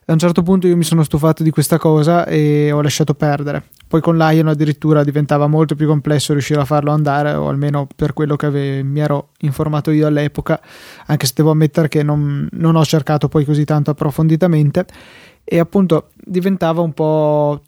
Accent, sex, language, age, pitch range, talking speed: native, male, Italian, 20-39, 150-165 Hz, 190 wpm